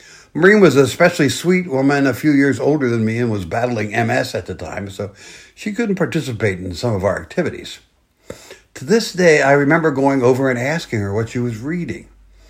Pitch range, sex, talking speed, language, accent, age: 105-150 Hz, male, 200 wpm, English, American, 60-79